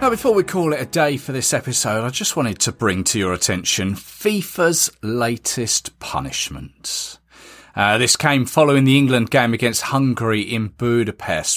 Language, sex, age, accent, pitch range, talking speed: English, male, 30-49, British, 100-150 Hz, 165 wpm